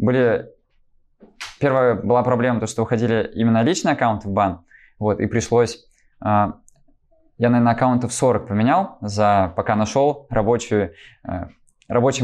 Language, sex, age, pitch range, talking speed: Russian, male, 20-39, 105-125 Hz, 130 wpm